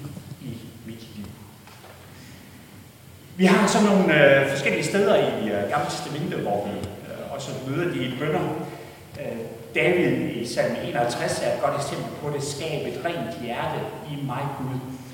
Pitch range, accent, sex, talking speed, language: 120-165 Hz, native, male, 145 wpm, Danish